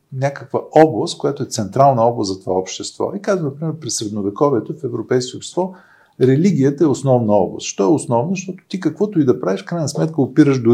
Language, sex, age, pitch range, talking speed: Bulgarian, male, 50-69, 110-165 Hz, 190 wpm